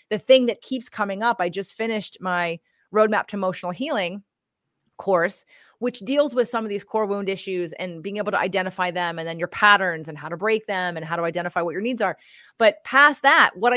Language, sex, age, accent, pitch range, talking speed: English, female, 30-49, American, 180-235 Hz, 220 wpm